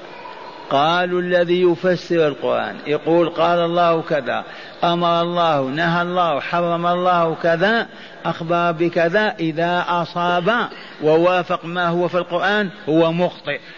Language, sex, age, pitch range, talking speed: Arabic, male, 50-69, 175-200 Hz, 115 wpm